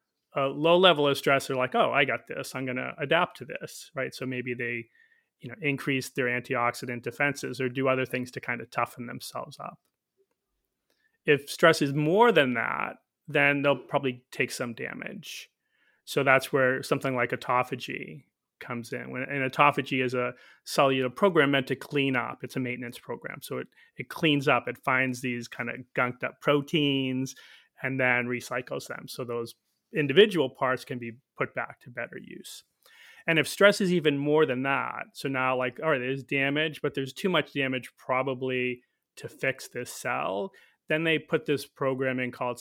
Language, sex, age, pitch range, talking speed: English, male, 30-49, 125-150 Hz, 185 wpm